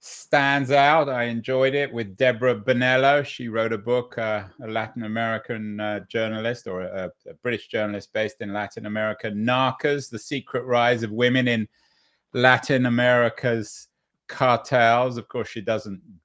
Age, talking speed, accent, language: 30-49, 150 wpm, British, English